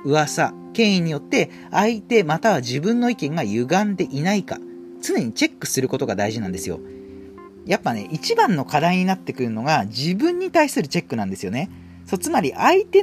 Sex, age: male, 40-59